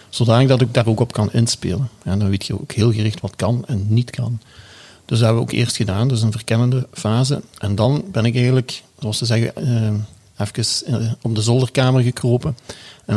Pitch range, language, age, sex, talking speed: 110-125 Hz, English, 40-59, male, 205 wpm